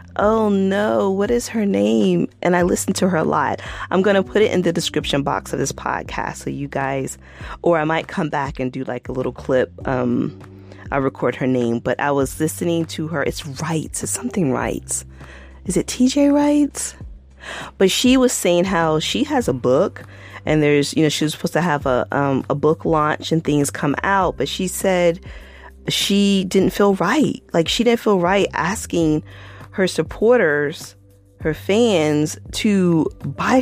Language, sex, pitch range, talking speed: English, female, 135-205 Hz, 185 wpm